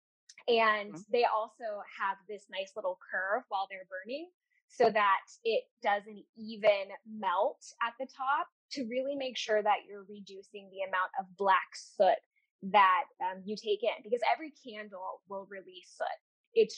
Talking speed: 155 wpm